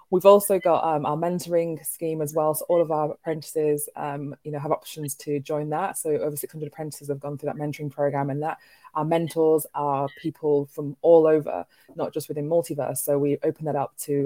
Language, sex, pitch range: English, female, 145-155 Hz